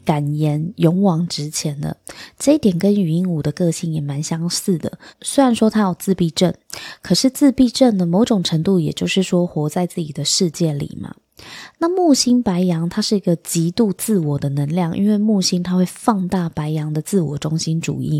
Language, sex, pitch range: Chinese, female, 160-210 Hz